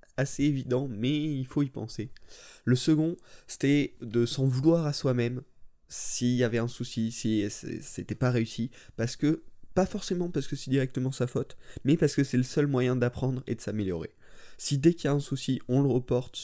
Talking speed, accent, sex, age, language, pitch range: 200 wpm, French, male, 20-39, French, 110-135 Hz